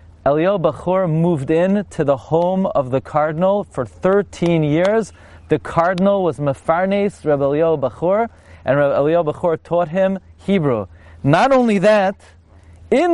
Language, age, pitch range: English, 30-49, 150-210 Hz